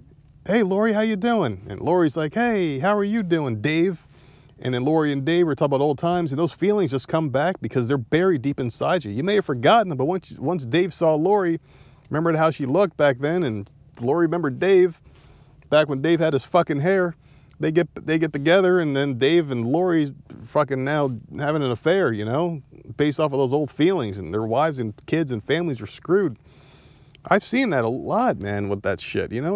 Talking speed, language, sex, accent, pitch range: 215 wpm, English, male, American, 130-170 Hz